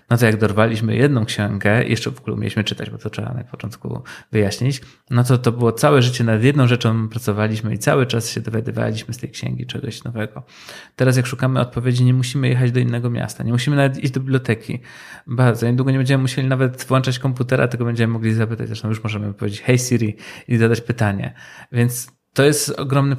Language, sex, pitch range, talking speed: Polish, male, 110-130 Hz, 200 wpm